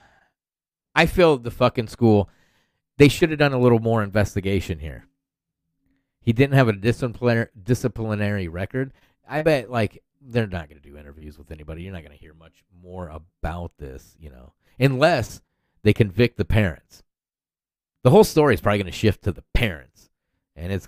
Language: English